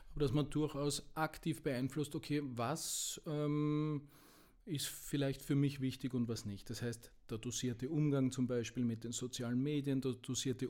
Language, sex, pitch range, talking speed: German, male, 130-145 Hz, 170 wpm